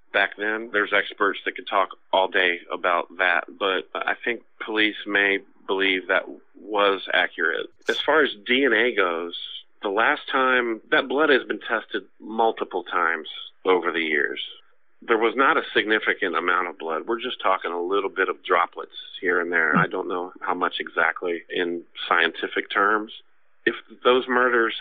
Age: 40-59